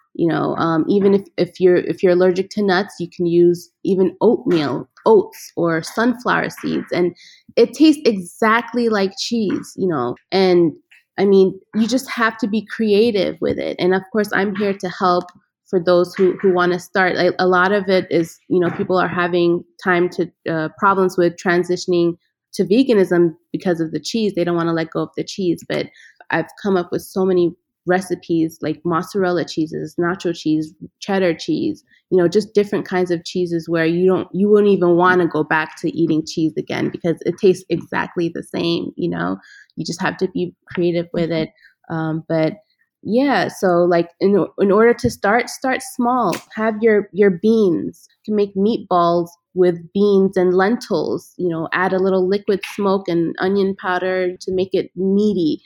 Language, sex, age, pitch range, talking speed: English, female, 20-39, 170-200 Hz, 190 wpm